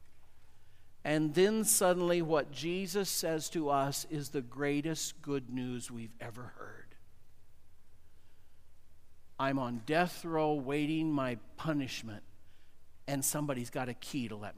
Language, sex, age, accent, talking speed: English, male, 50-69, American, 125 wpm